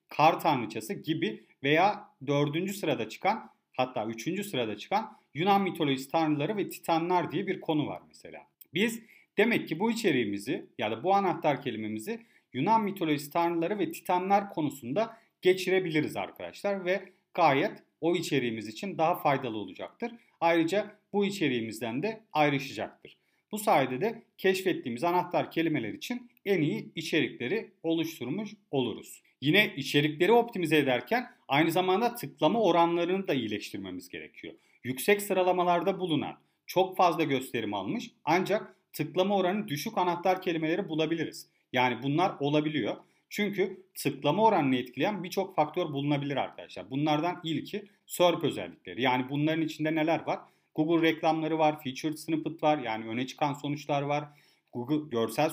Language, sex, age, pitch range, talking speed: Turkish, male, 40-59, 145-190 Hz, 130 wpm